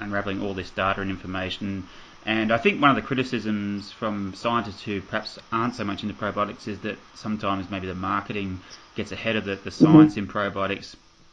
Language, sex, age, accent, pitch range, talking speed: English, male, 20-39, Australian, 100-115 Hz, 190 wpm